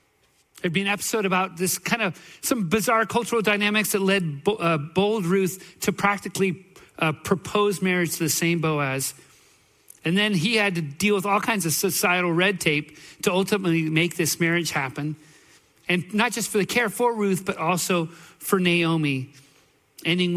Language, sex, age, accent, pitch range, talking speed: English, male, 40-59, American, 150-205 Hz, 170 wpm